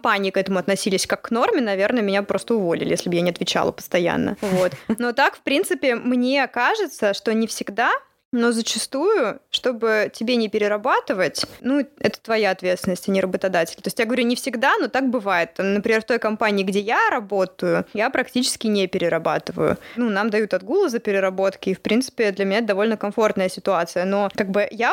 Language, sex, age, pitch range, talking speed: Russian, female, 20-39, 195-245 Hz, 190 wpm